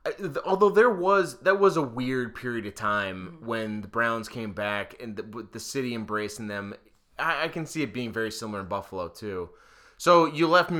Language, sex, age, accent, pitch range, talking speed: English, male, 20-39, American, 100-125 Hz, 200 wpm